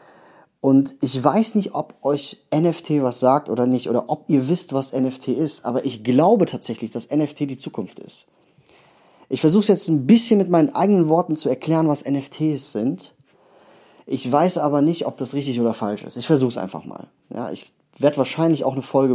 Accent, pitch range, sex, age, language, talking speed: German, 120-165 Hz, male, 30-49, German, 195 wpm